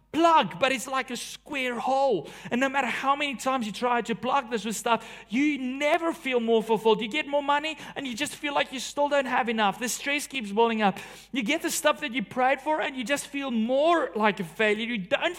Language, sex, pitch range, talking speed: English, male, 170-260 Hz, 240 wpm